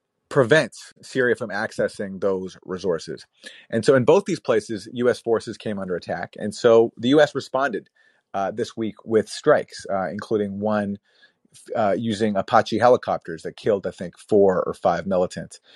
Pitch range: 100-120 Hz